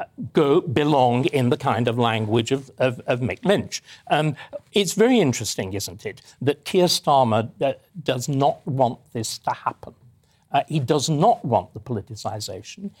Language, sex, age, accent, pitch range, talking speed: English, male, 60-79, British, 125-160 Hz, 160 wpm